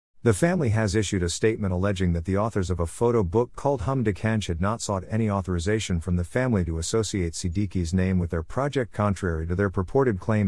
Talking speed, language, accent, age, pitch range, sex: 220 wpm, English, American, 50-69, 90-110 Hz, male